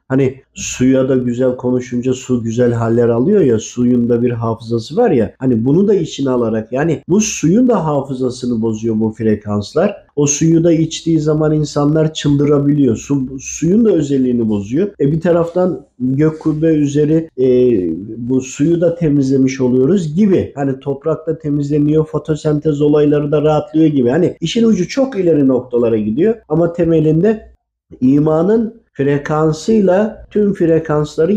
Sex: male